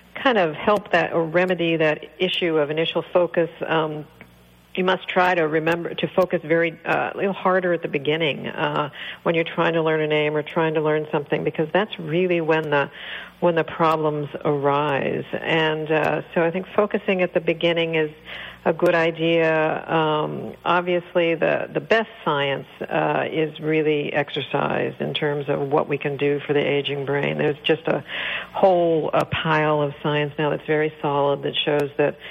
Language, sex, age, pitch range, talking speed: English, female, 60-79, 150-170 Hz, 180 wpm